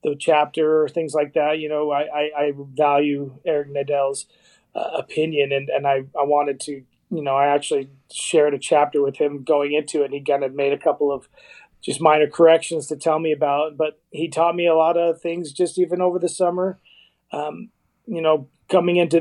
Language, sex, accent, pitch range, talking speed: English, male, American, 145-165 Hz, 210 wpm